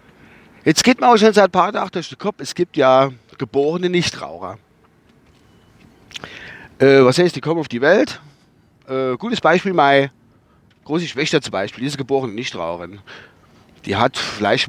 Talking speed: 160 wpm